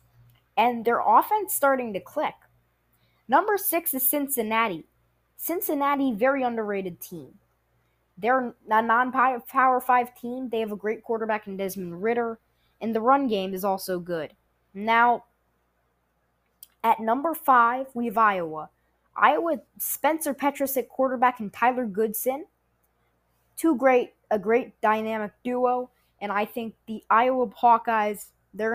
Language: English